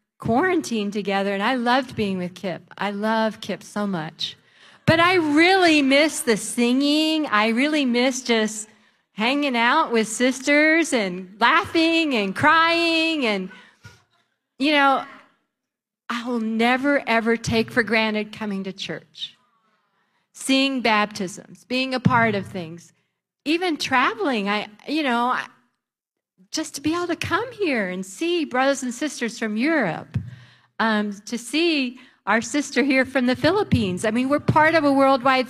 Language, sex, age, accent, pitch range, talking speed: English, female, 40-59, American, 200-270 Hz, 145 wpm